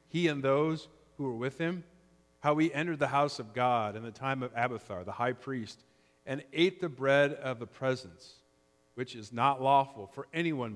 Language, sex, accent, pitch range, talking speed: English, male, American, 90-145 Hz, 195 wpm